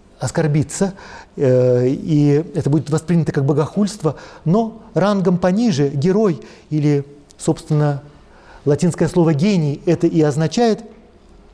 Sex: male